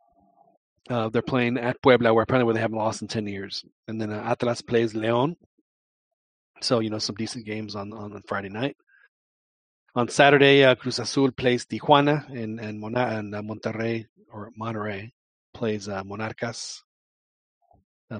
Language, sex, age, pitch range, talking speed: English, male, 40-59, 110-125 Hz, 160 wpm